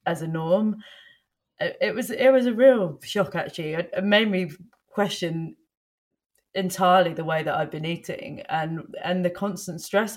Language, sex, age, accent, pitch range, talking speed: English, female, 20-39, British, 170-200 Hz, 160 wpm